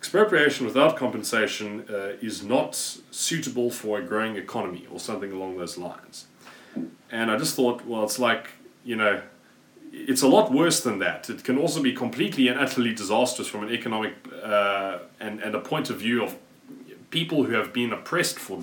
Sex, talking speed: male, 180 wpm